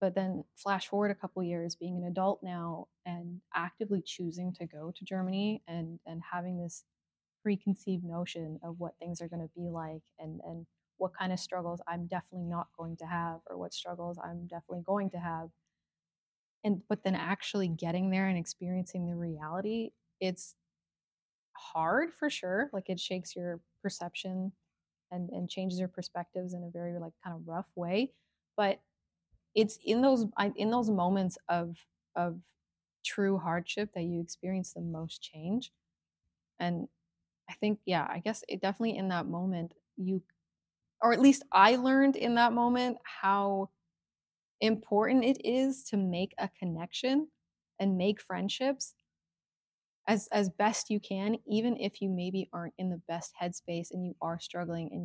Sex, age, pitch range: female, 20-39, 170-200 Hz